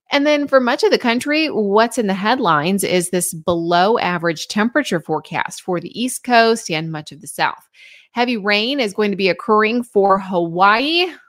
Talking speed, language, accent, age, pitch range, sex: 185 wpm, English, American, 30-49, 165-230 Hz, female